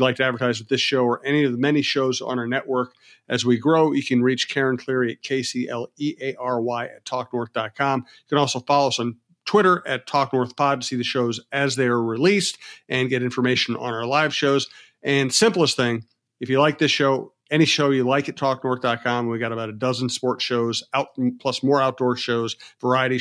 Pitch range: 120-150 Hz